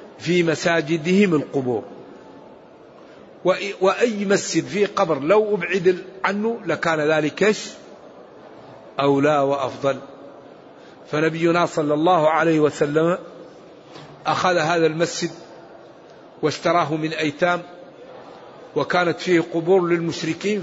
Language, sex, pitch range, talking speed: English, male, 155-195 Hz, 85 wpm